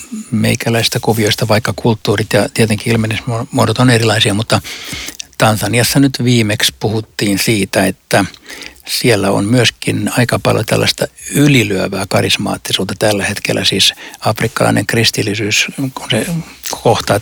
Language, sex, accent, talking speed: Finnish, male, native, 110 wpm